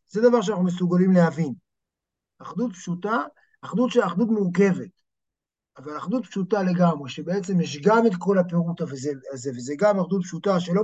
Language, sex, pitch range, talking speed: Hebrew, male, 170-225 Hz, 150 wpm